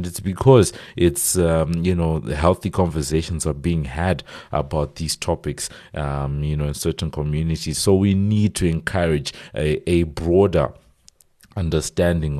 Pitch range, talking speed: 75-90 Hz, 145 wpm